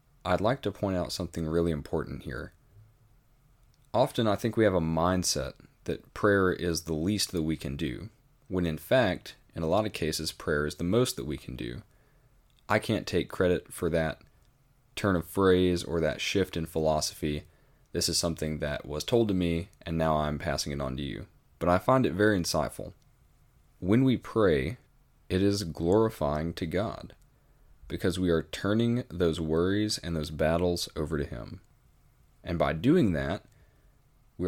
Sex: male